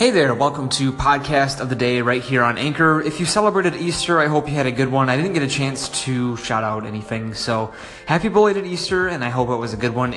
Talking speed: 260 wpm